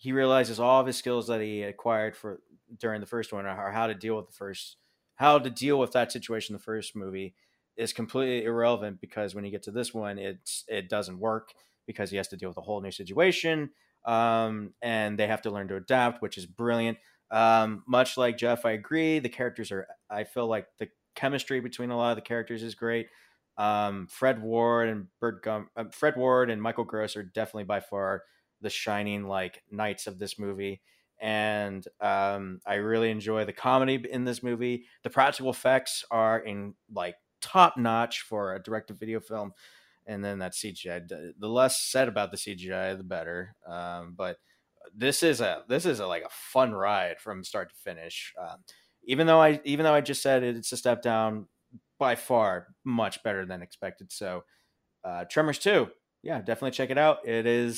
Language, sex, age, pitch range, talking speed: English, male, 20-39, 105-125 Hz, 200 wpm